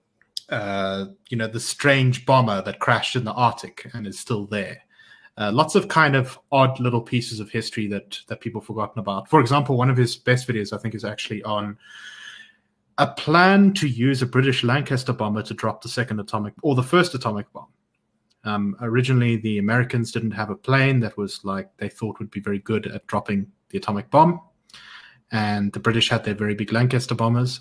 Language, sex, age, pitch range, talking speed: English, male, 30-49, 105-130 Hz, 200 wpm